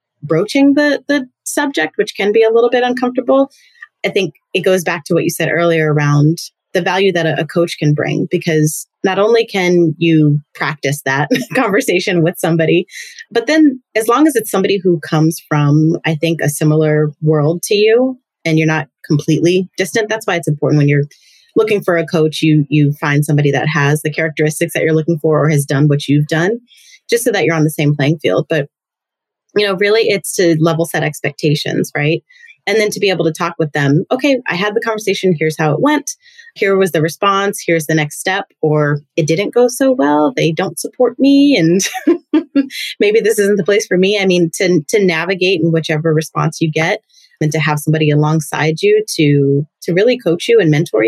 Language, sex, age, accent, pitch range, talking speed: English, female, 30-49, American, 155-210 Hz, 205 wpm